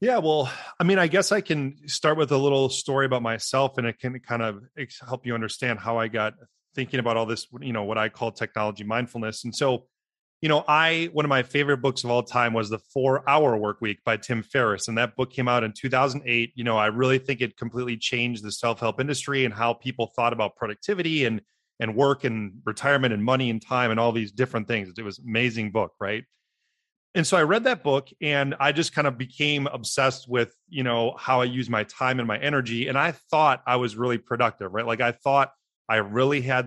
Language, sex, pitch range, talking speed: English, male, 115-140 Hz, 230 wpm